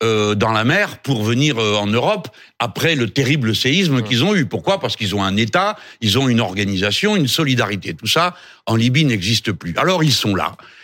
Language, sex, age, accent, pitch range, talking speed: French, male, 60-79, French, 115-160 Hz, 200 wpm